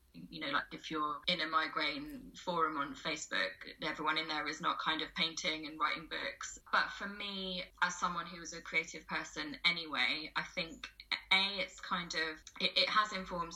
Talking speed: 190 wpm